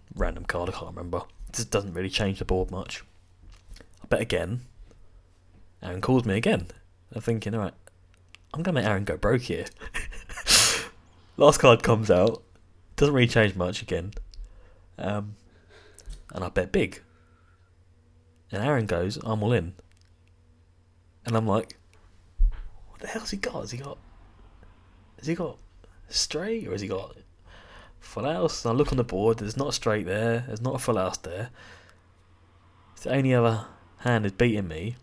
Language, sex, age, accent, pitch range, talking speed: English, male, 20-39, British, 90-110 Hz, 165 wpm